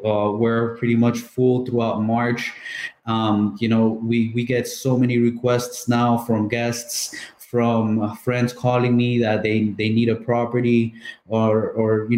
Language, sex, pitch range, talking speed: English, male, 110-125 Hz, 160 wpm